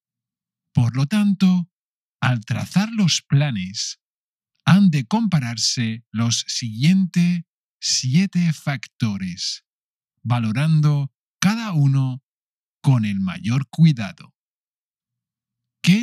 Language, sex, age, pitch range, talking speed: English, male, 50-69, 120-175 Hz, 80 wpm